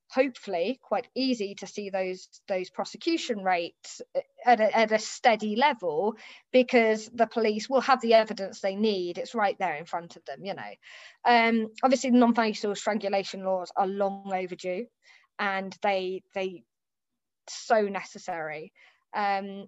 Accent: British